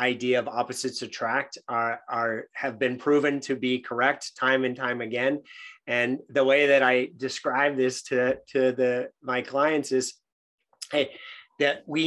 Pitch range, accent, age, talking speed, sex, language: 115-135 Hz, American, 30-49, 160 wpm, male, English